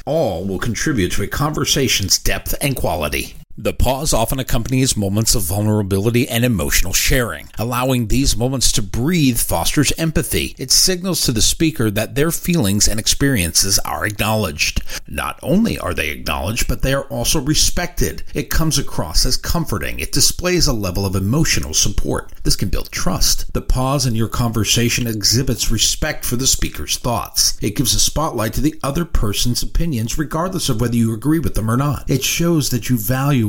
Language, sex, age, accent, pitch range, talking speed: English, male, 50-69, American, 100-135 Hz, 175 wpm